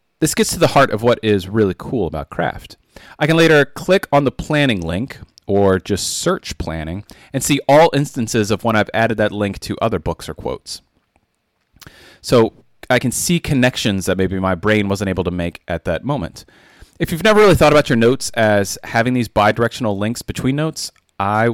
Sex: male